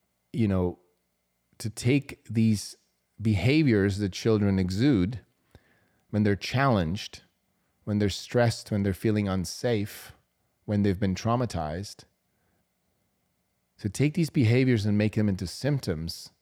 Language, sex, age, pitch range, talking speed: English, male, 30-49, 95-125 Hz, 115 wpm